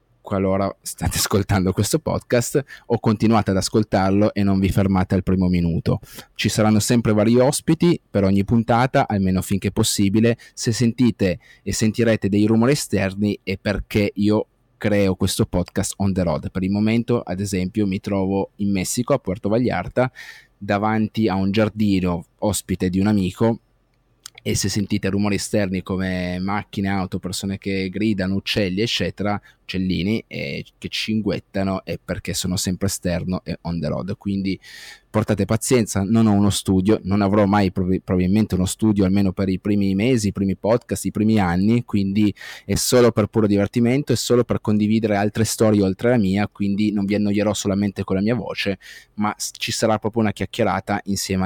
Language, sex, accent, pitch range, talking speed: Italian, male, native, 95-110 Hz, 170 wpm